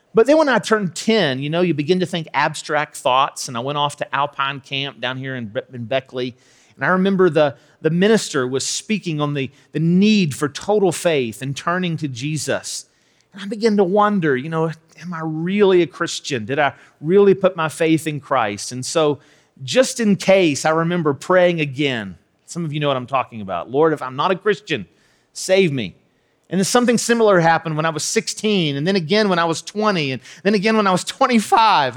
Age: 40-59